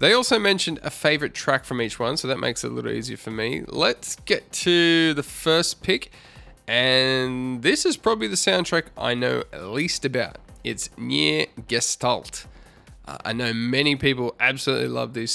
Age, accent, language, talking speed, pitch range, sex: 20-39, Australian, English, 180 wpm, 120-150 Hz, male